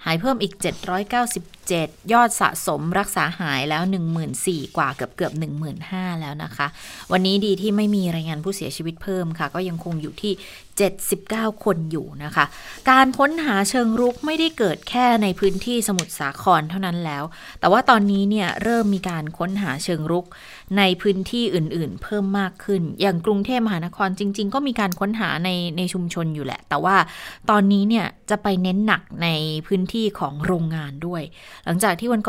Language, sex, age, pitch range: Thai, female, 20-39, 165-210 Hz